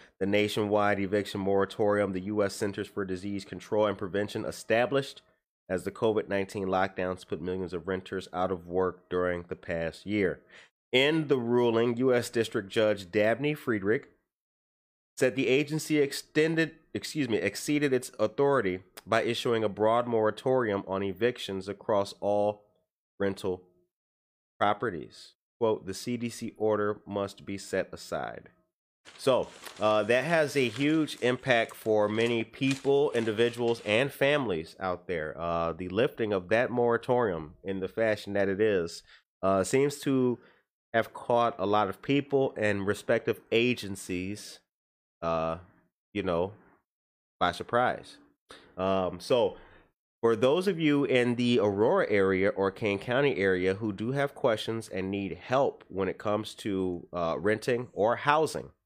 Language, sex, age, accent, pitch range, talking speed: English, male, 30-49, American, 95-120 Hz, 140 wpm